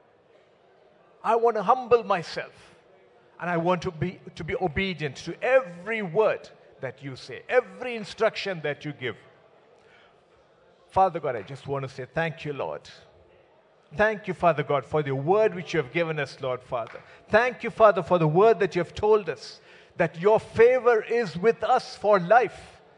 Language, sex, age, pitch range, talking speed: English, male, 50-69, 155-215 Hz, 175 wpm